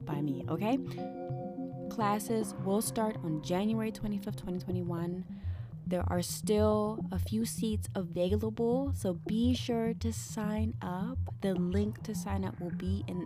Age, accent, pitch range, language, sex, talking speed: 20-39, American, 150-195 Hz, English, female, 140 wpm